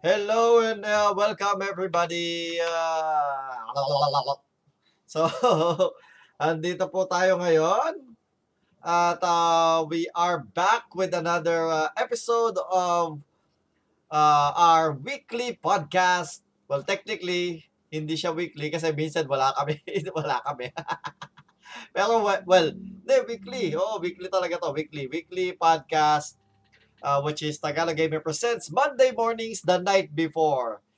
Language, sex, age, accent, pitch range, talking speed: Filipino, male, 20-39, native, 150-190 Hz, 110 wpm